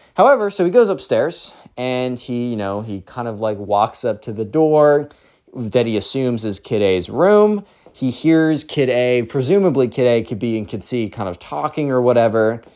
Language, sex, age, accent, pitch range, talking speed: English, male, 20-39, American, 110-155 Hz, 200 wpm